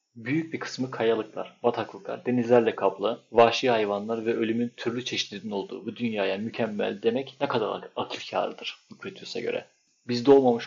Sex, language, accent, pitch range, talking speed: male, Turkish, native, 115-155 Hz, 145 wpm